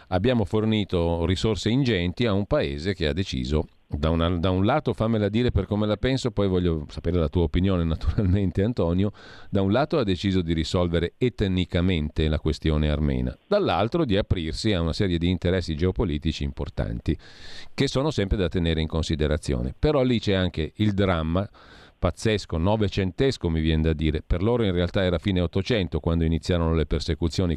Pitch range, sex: 80-105 Hz, male